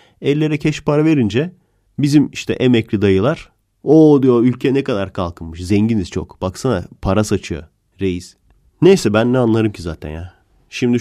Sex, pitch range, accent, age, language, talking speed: male, 90-120 Hz, Turkish, 30-49, Dutch, 155 wpm